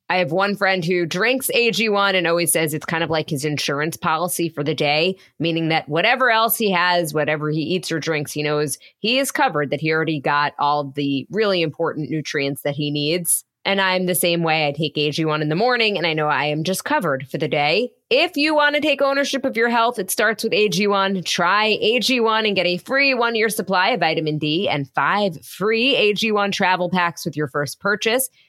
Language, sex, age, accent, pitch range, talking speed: English, female, 20-39, American, 160-215 Hz, 215 wpm